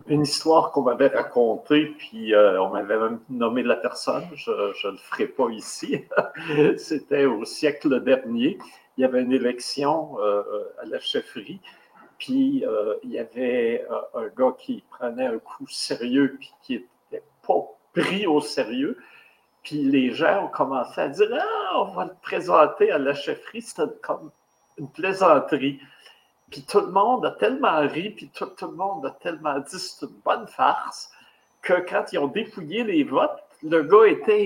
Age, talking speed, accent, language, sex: 60-79, 180 wpm, French, French, male